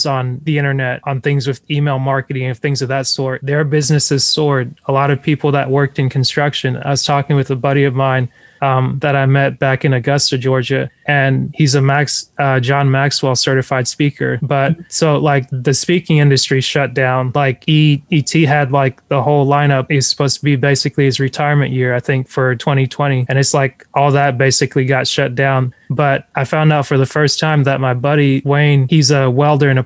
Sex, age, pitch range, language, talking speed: male, 20-39, 135-145 Hz, English, 205 wpm